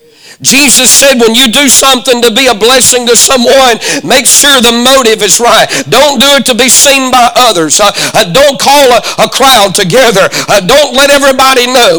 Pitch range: 200-280 Hz